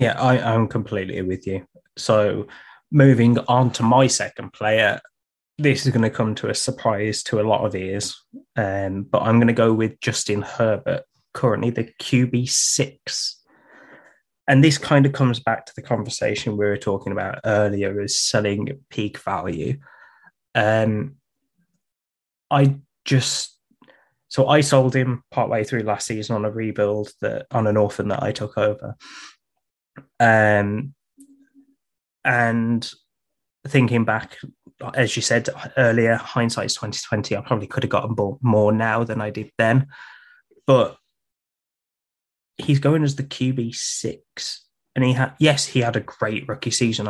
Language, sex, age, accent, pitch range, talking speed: English, male, 10-29, British, 105-130 Hz, 155 wpm